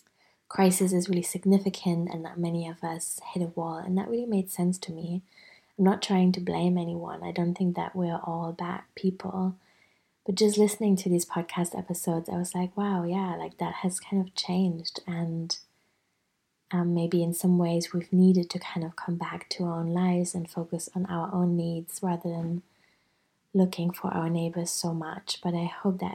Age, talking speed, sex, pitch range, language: 20-39, 195 wpm, female, 170-185 Hz, English